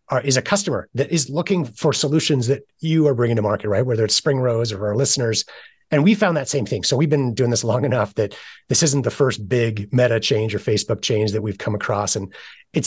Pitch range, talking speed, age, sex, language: 105-145 Hz, 245 wpm, 30-49, male, English